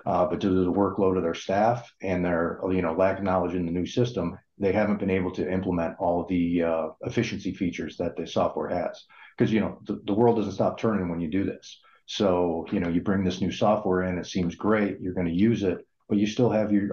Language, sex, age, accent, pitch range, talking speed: English, male, 40-59, American, 90-100 Hz, 250 wpm